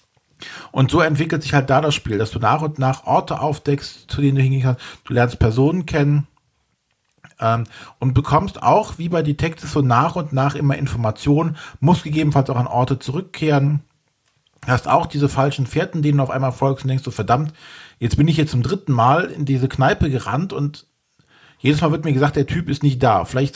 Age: 40-59